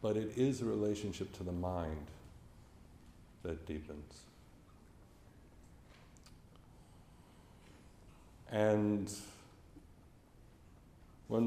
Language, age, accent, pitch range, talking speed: English, 50-69, American, 90-110 Hz, 65 wpm